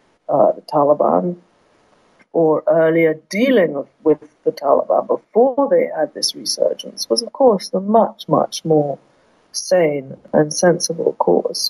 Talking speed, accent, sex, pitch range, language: 130 wpm, British, female, 155-210 Hz, English